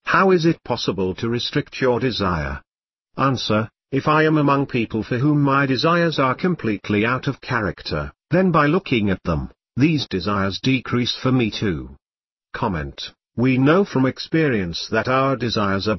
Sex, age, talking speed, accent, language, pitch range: male, 50-69, 160 wpm, British, English, 105-145 Hz